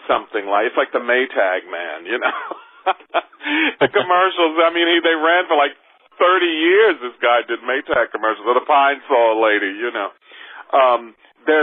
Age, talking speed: 40-59, 170 wpm